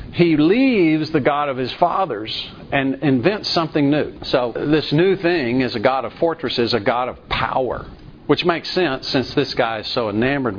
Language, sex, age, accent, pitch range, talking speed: English, male, 50-69, American, 125-160 Hz, 185 wpm